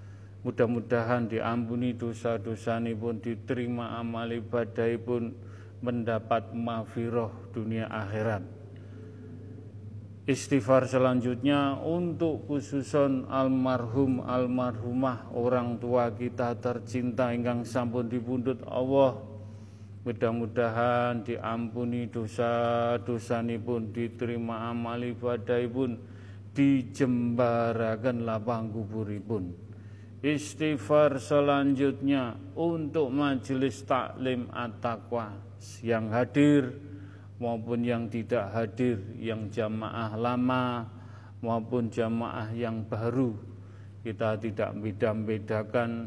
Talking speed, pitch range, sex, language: 80 wpm, 110-125 Hz, male, Indonesian